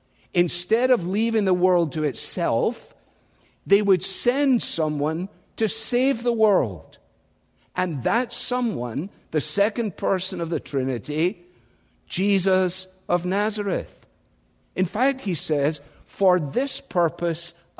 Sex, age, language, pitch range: male, 60-79, English, 140-190 Hz